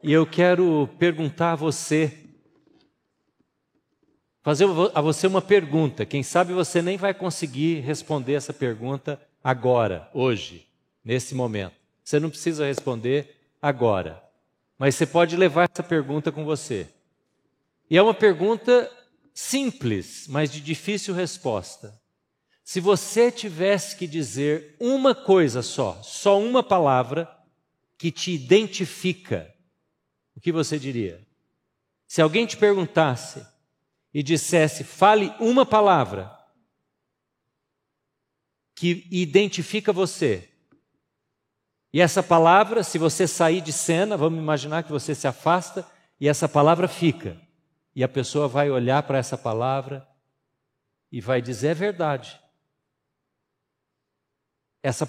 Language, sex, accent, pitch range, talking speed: Portuguese, male, Brazilian, 140-180 Hz, 120 wpm